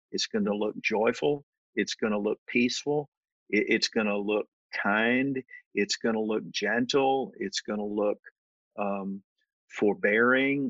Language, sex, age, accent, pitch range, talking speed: English, male, 50-69, American, 105-150 Hz, 145 wpm